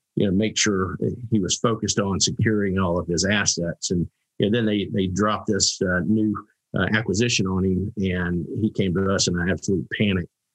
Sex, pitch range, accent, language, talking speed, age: male, 95-110 Hz, American, English, 195 wpm, 50-69